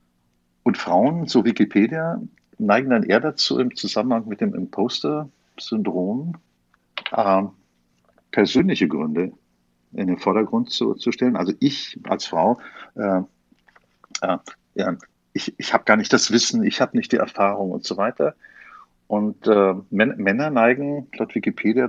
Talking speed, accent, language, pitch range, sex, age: 145 wpm, German, German, 85-120 Hz, male, 50-69